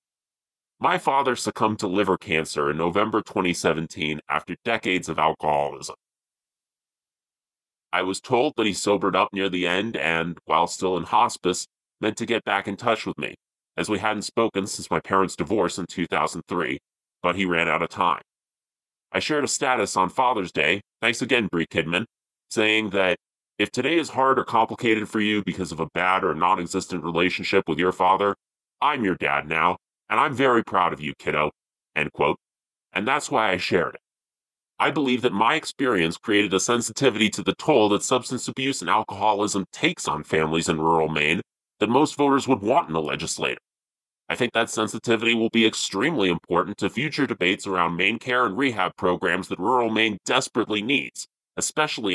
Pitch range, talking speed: 90-110 Hz, 180 wpm